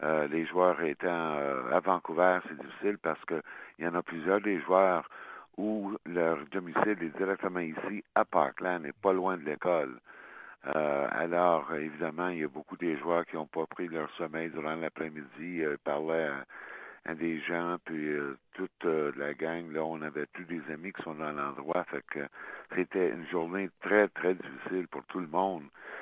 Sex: male